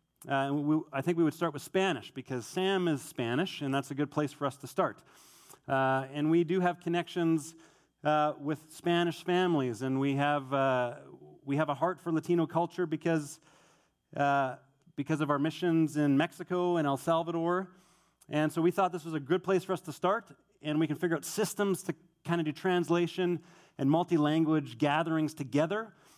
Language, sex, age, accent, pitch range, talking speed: English, male, 30-49, American, 140-175 Hz, 190 wpm